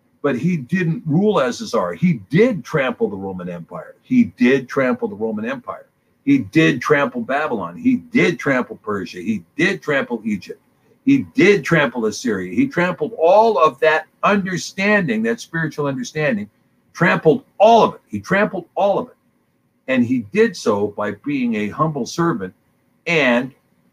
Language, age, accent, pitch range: English, 60-79, American, 150-225 Hz